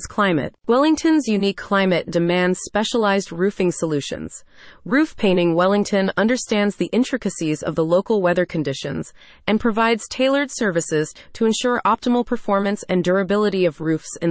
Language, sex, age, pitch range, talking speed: English, female, 30-49, 175-225 Hz, 135 wpm